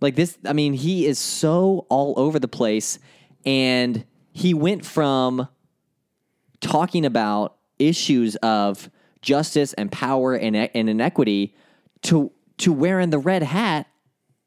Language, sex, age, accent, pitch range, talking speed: English, male, 20-39, American, 115-155 Hz, 130 wpm